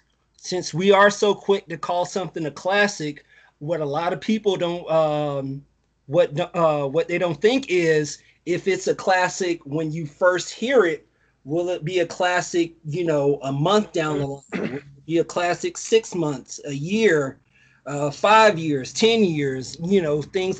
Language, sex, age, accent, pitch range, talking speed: English, male, 30-49, American, 150-195 Hz, 180 wpm